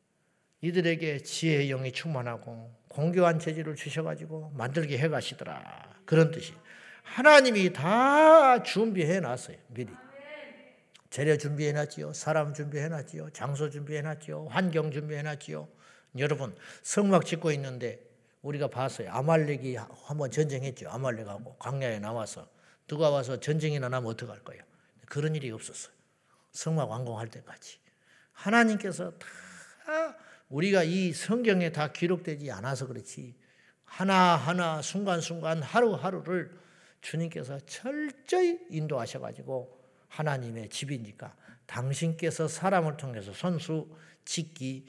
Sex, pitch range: male, 130-175 Hz